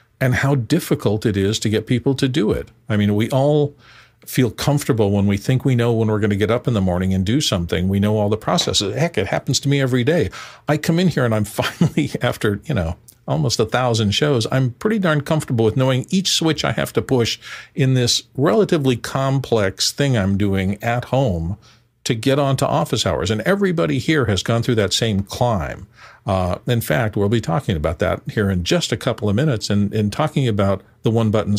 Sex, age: male, 50-69